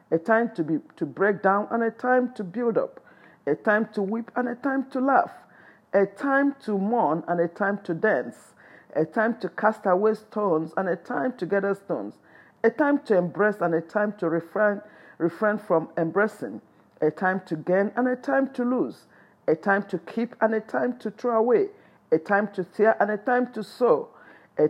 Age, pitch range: 50-69, 195-245 Hz